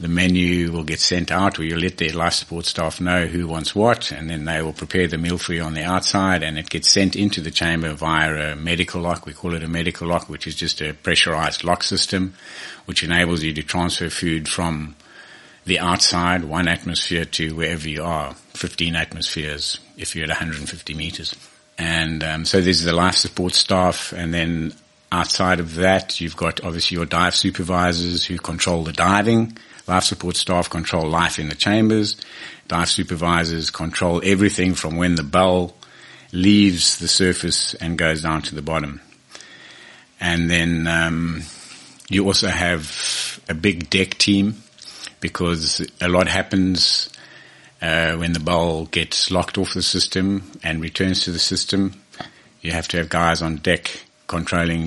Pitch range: 80-90 Hz